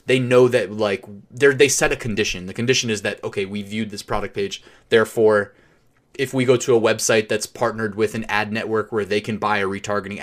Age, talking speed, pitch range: 20-39, 215 wpm, 110-135 Hz